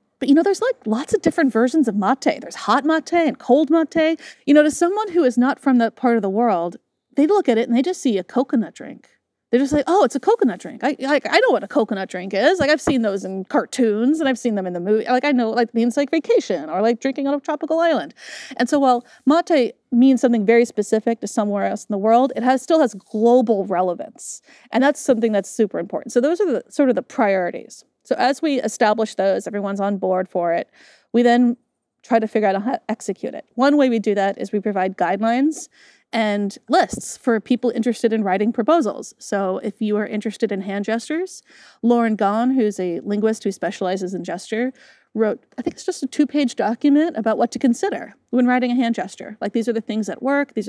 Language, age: English, 30-49